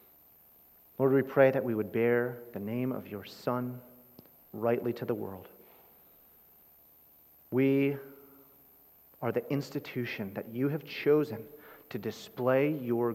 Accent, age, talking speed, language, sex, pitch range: American, 30-49, 125 wpm, English, male, 95-125 Hz